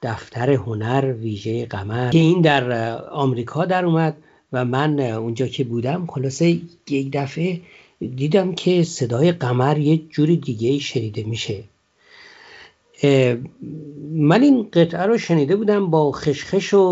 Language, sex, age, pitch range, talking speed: Persian, male, 50-69, 130-170 Hz, 130 wpm